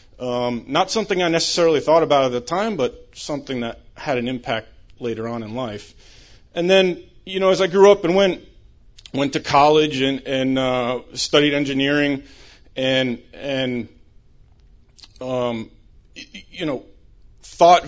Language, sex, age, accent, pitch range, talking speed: English, male, 30-49, American, 120-155 Hz, 150 wpm